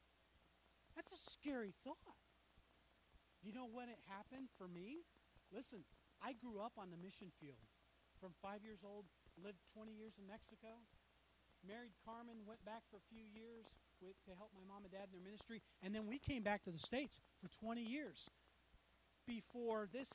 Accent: American